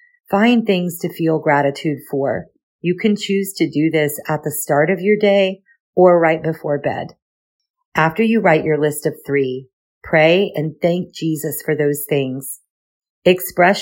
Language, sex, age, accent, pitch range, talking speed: English, female, 40-59, American, 150-185 Hz, 160 wpm